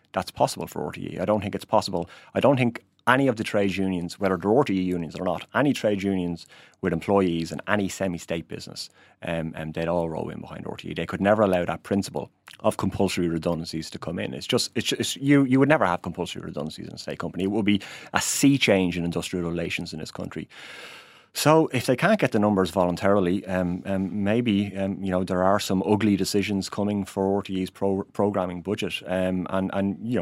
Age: 30-49